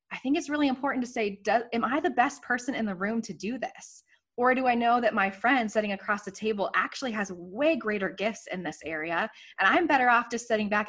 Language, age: English, 20-39